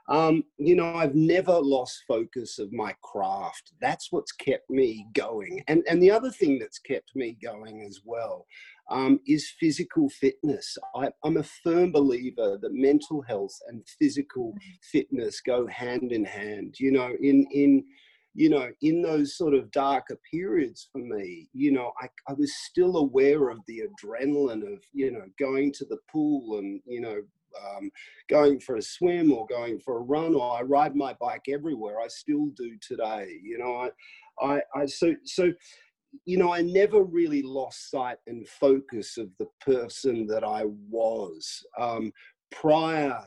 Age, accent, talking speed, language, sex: 40-59, Australian, 170 wpm, English, male